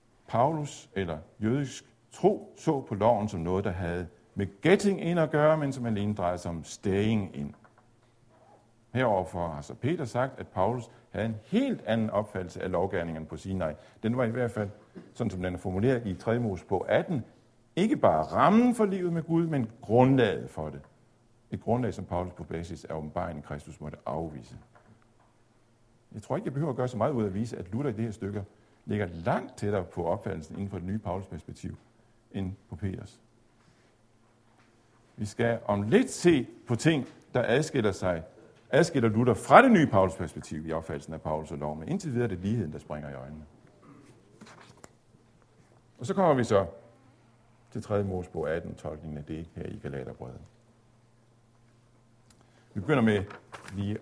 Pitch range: 95-120 Hz